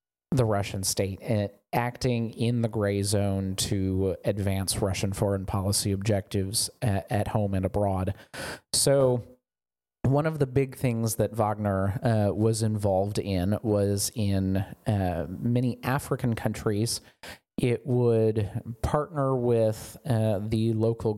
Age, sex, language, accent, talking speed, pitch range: 30-49, male, English, American, 130 wpm, 100-115 Hz